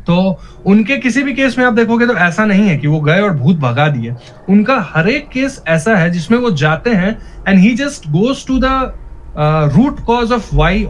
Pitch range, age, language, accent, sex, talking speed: 135-190 Hz, 20-39, Hindi, native, male, 215 wpm